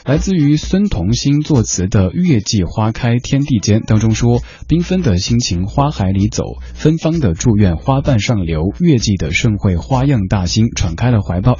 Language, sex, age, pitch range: Chinese, male, 20-39, 95-135 Hz